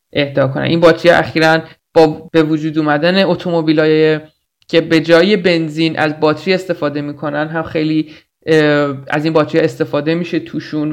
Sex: male